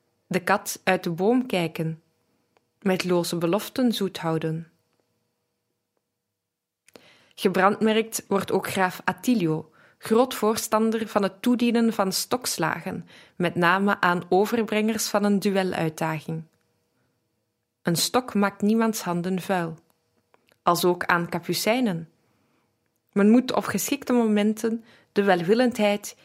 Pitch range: 170-220 Hz